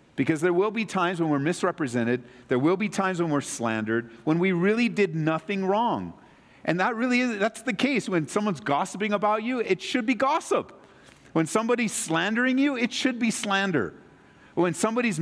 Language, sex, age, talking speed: English, male, 50-69, 185 wpm